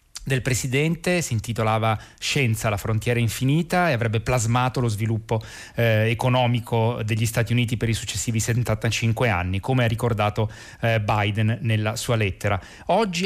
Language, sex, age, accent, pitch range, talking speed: Italian, male, 30-49, native, 110-125 Hz, 145 wpm